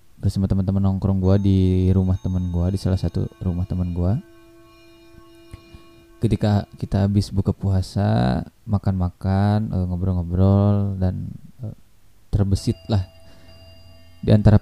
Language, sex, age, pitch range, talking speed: Indonesian, male, 20-39, 95-110 Hz, 105 wpm